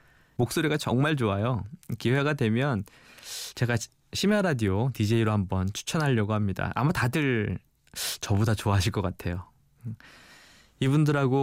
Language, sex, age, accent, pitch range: Korean, male, 20-39, native, 105-145 Hz